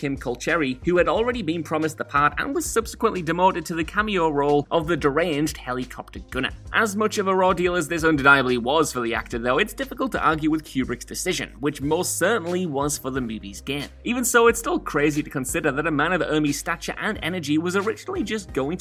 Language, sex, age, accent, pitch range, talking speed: English, male, 30-49, British, 135-185 Hz, 225 wpm